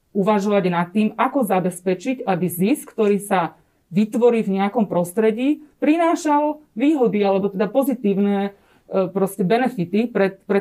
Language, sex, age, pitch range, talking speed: Slovak, female, 40-59, 185-210 Hz, 125 wpm